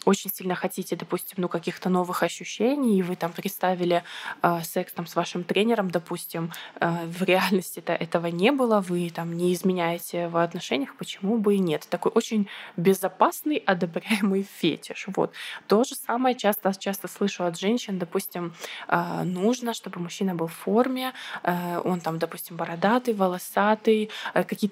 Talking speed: 160 wpm